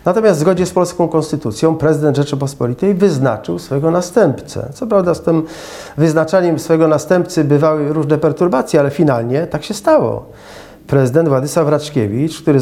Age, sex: 40-59, male